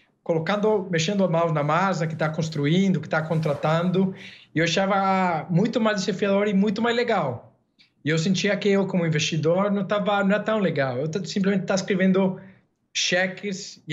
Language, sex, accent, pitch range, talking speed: English, male, Brazilian, 145-190 Hz, 175 wpm